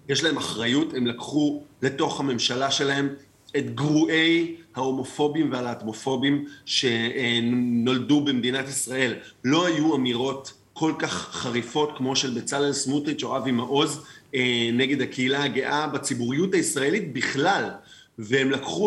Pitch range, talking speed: 125-155 Hz, 115 wpm